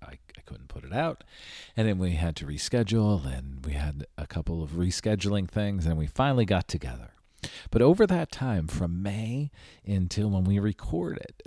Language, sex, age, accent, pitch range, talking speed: English, male, 40-59, American, 80-105 Hz, 180 wpm